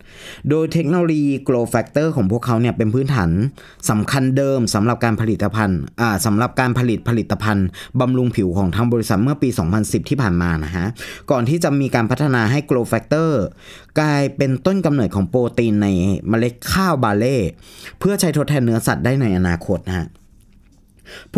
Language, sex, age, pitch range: Thai, male, 20-39, 110-150 Hz